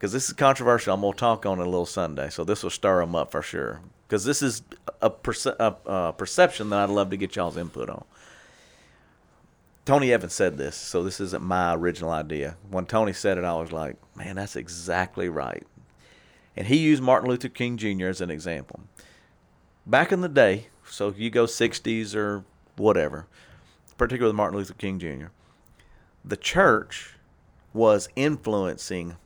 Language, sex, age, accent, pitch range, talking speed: English, male, 40-59, American, 90-120 Hz, 175 wpm